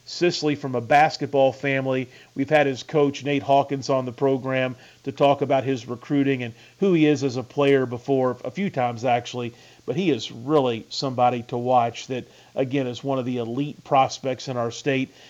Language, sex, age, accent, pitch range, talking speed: English, male, 40-59, American, 125-145 Hz, 190 wpm